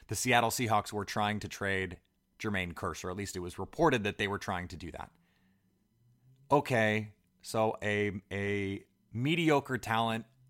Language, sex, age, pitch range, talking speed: English, male, 30-49, 95-120 Hz, 155 wpm